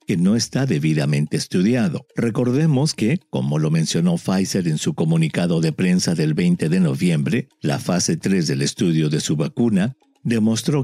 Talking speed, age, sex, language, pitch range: 160 wpm, 50-69, male, English, 110-170 Hz